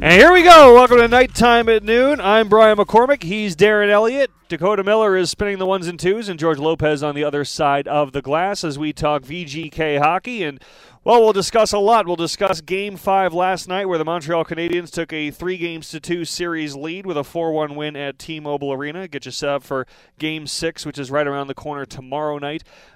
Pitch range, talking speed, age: 140-175 Hz, 220 wpm, 30-49